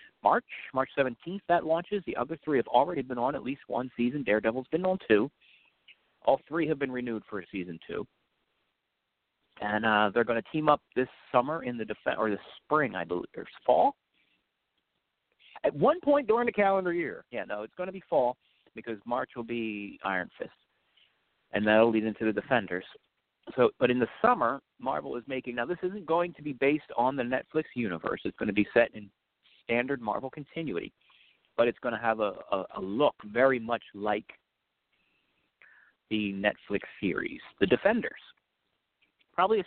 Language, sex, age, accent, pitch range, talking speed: English, male, 50-69, American, 105-160 Hz, 180 wpm